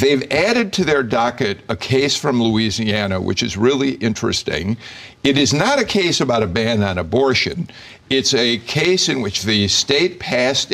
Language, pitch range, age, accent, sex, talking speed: English, 100-135 Hz, 60-79, American, male, 175 wpm